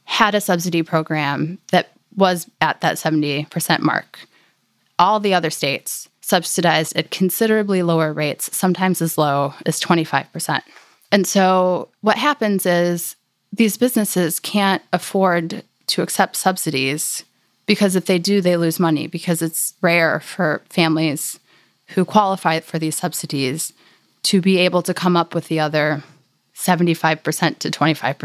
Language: English